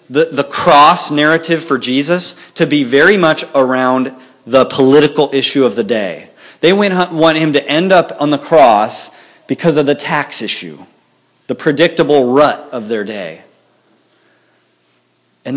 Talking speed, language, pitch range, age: 145 wpm, English, 105-155 Hz, 30-49